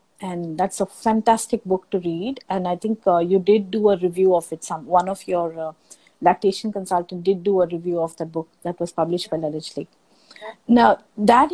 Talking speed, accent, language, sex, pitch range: 205 wpm, Indian, English, female, 180-230 Hz